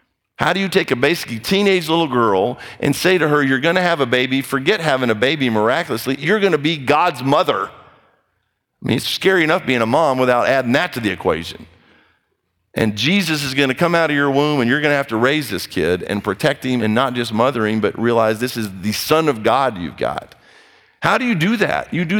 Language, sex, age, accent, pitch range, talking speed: English, male, 50-69, American, 130-165 Hz, 235 wpm